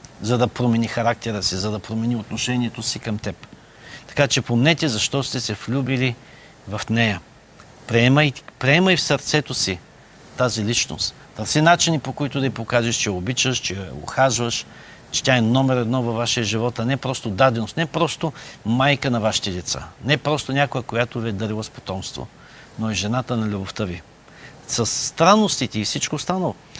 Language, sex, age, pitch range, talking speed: Bulgarian, male, 50-69, 115-140 Hz, 175 wpm